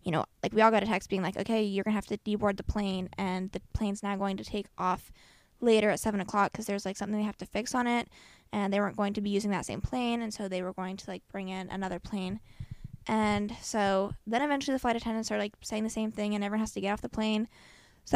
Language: English